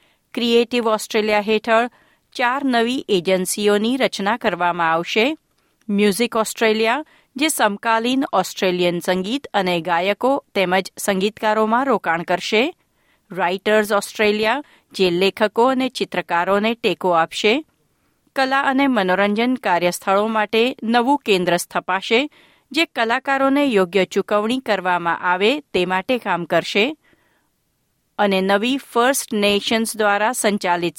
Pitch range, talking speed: 190-250 Hz, 105 wpm